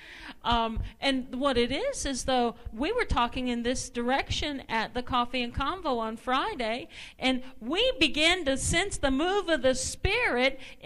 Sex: female